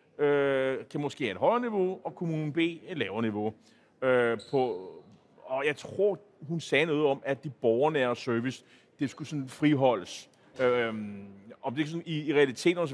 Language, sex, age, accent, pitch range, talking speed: Danish, male, 30-49, native, 135-185 Hz, 145 wpm